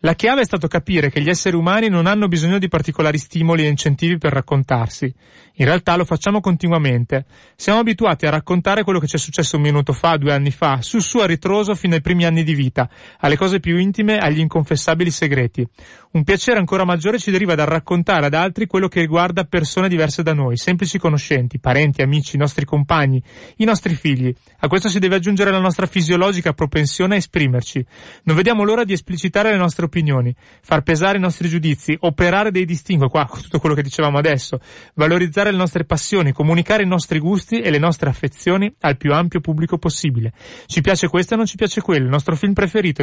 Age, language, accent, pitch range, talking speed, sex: 30-49, Italian, native, 145-185 Hz, 200 wpm, male